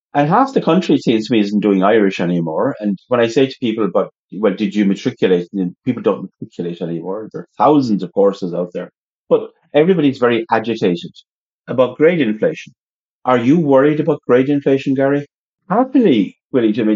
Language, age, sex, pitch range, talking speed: English, 40-59, male, 100-145 Hz, 180 wpm